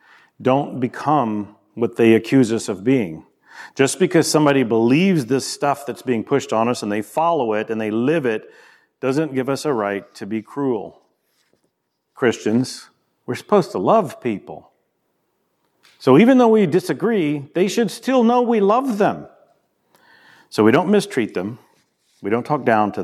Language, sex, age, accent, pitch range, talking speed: English, male, 40-59, American, 110-145 Hz, 165 wpm